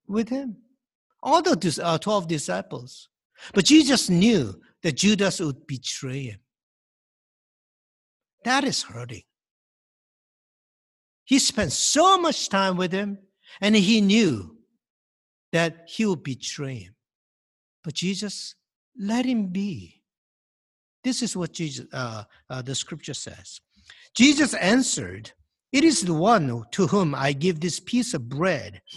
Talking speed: 120 wpm